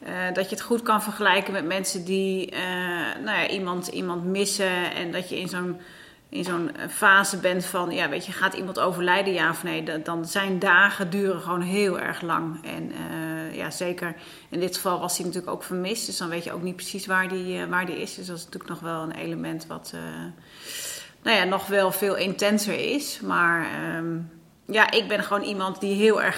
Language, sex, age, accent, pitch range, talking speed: Dutch, female, 30-49, Dutch, 175-195 Hz, 215 wpm